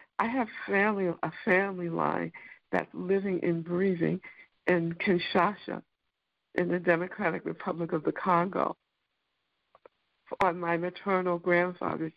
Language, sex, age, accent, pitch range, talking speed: English, female, 60-79, American, 165-190 Hz, 115 wpm